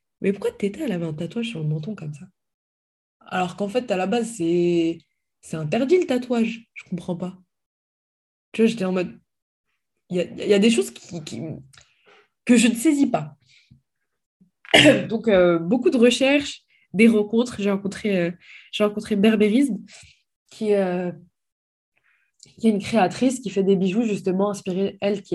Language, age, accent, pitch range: French, 20-39, French, 180-235 Hz